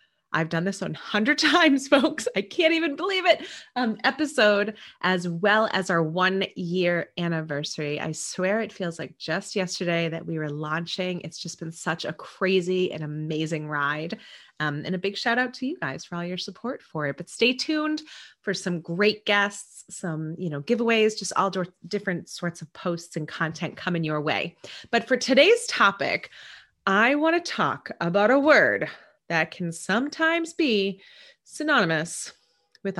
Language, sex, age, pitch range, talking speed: English, female, 30-49, 165-250 Hz, 170 wpm